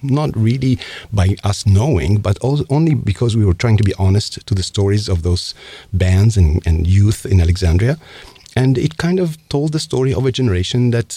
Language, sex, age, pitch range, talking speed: English, male, 50-69, 95-130 Hz, 195 wpm